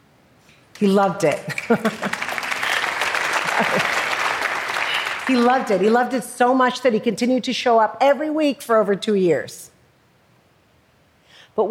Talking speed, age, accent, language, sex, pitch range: 125 wpm, 50-69, American, English, female, 180-240 Hz